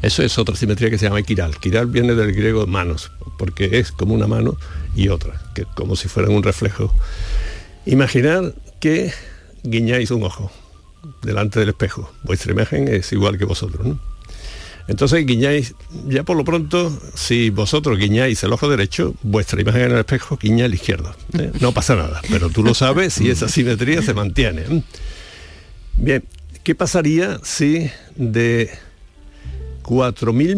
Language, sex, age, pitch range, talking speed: Spanish, male, 70-89, 90-130 Hz, 160 wpm